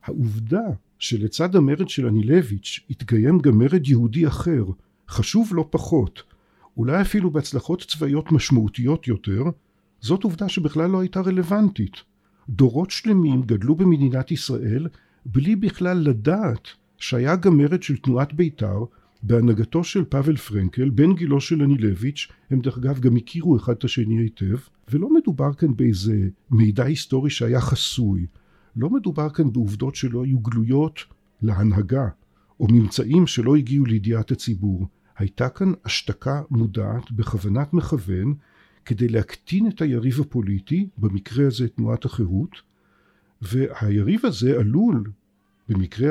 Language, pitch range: Hebrew, 110-155 Hz